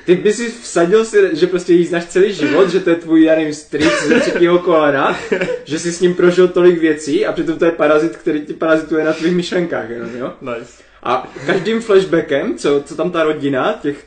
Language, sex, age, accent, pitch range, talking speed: Czech, male, 20-39, native, 160-190 Hz, 200 wpm